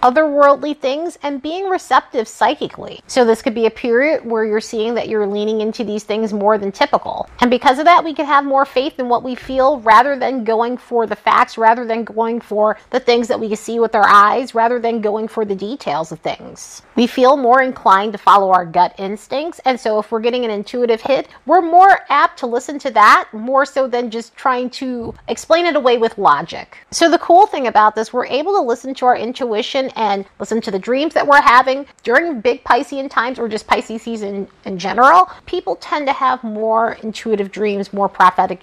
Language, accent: English, American